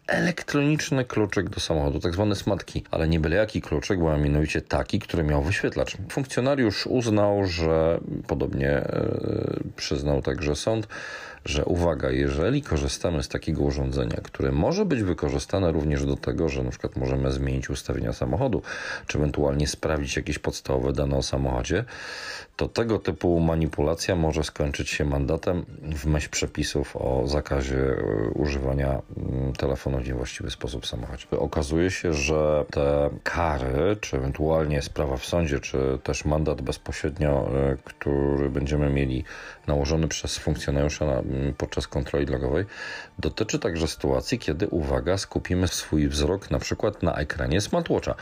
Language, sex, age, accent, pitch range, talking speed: Polish, male, 40-59, native, 70-90 Hz, 135 wpm